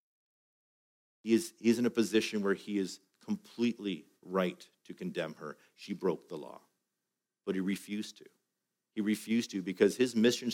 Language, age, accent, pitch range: English, 50-69, American, 95-115 Hz